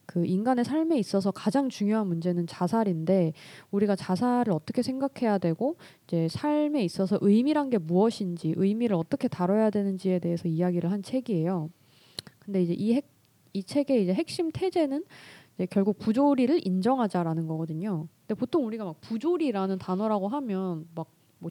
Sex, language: female, Korean